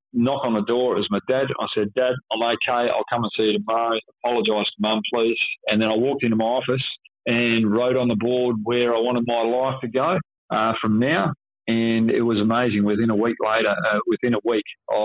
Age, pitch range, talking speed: 40-59, 105-115 Hz, 225 wpm